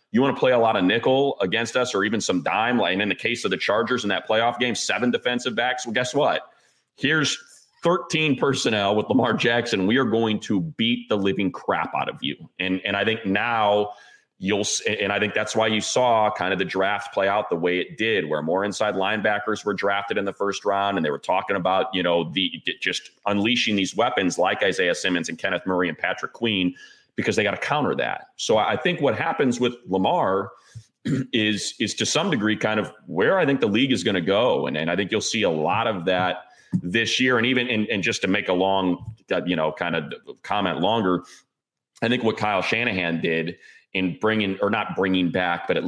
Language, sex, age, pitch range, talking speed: English, male, 30-49, 95-120 Hz, 225 wpm